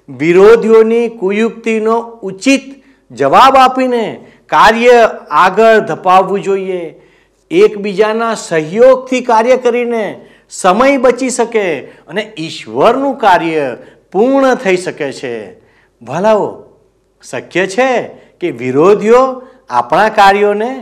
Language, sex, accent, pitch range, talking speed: Gujarati, male, native, 150-230 Hz, 85 wpm